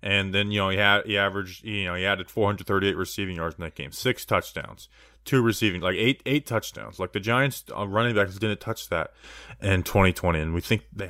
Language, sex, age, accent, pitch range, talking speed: English, male, 20-39, American, 95-125 Hz, 225 wpm